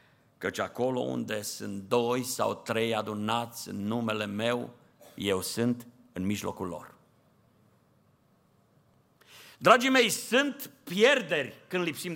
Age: 50-69